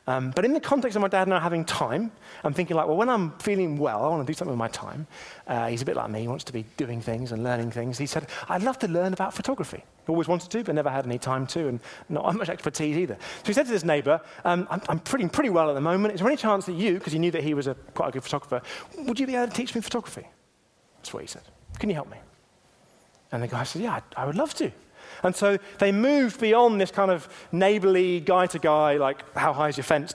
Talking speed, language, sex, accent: 275 wpm, English, male, British